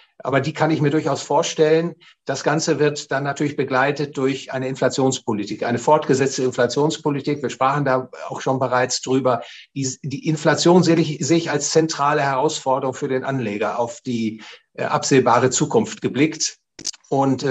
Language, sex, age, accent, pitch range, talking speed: German, male, 60-79, German, 130-150 Hz, 145 wpm